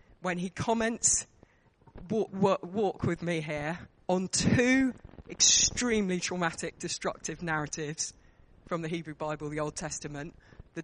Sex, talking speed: female, 120 wpm